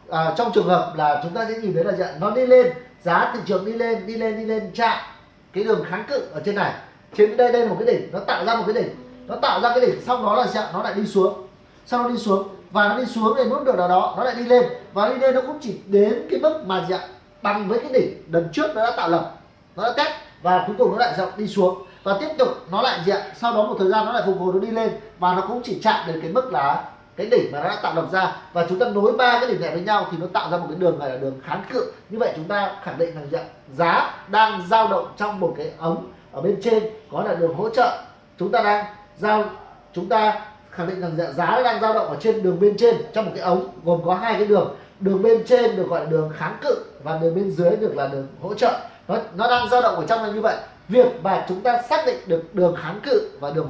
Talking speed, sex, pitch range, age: 285 wpm, male, 175-235 Hz, 30-49